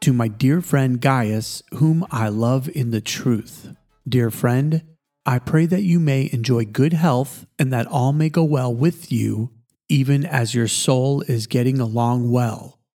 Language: English